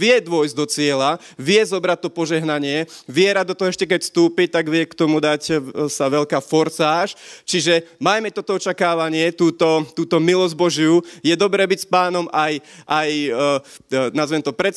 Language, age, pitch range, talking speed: Slovak, 30-49, 160-185 Hz, 155 wpm